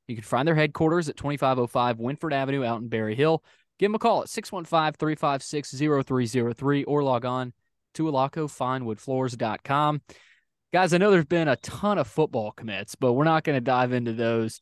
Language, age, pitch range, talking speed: English, 20-39, 125-150 Hz, 170 wpm